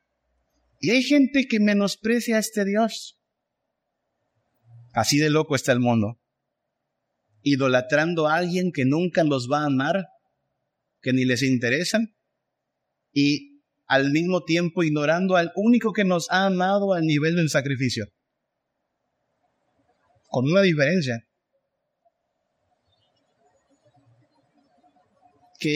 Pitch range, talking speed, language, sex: 135-185 Hz, 105 wpm, Spanish, male